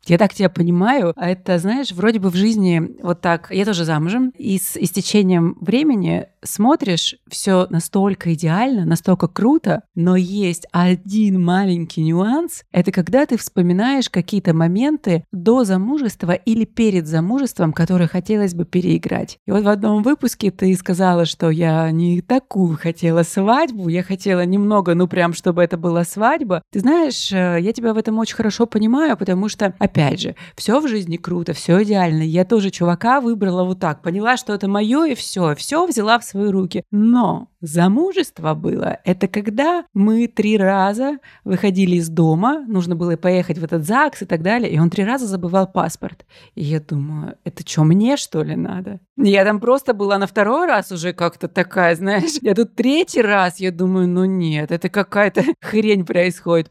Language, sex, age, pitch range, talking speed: Russian, female, 30-49, 175-220 Hz, 170 wpm